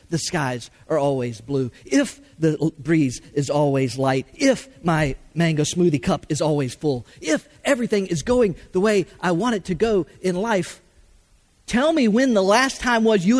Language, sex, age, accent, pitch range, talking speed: English, male, 50-69, American, 145-210 Hz, 180 wpm